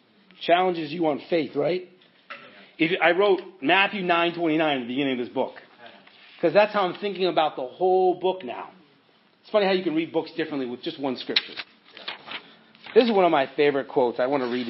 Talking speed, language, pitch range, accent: 190 wpm, English, 135-200 Hz, American